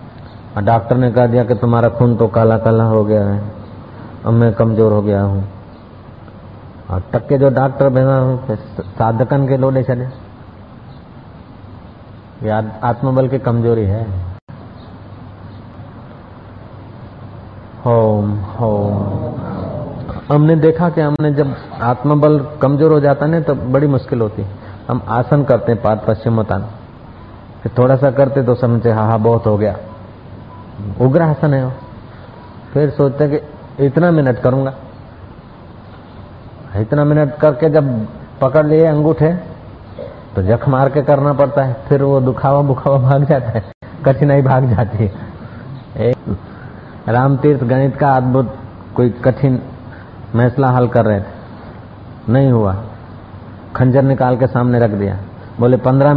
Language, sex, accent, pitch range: Hindi, male, native, 110-135 Hz